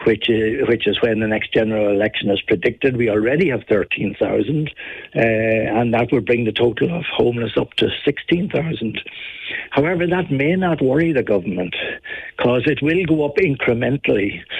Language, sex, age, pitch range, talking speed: English, male, 60-79, 110-145 Hz, 155 wpm